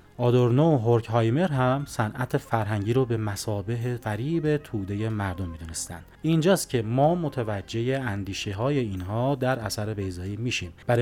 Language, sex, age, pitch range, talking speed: Persian, male, 30-49, 105-140 Hz, 135 wpm